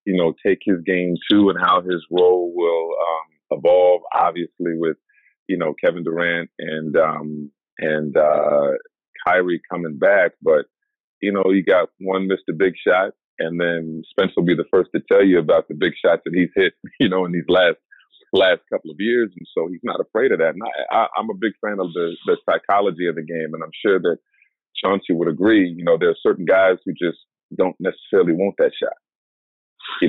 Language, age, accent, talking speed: English, 30-49, American, 205 wpm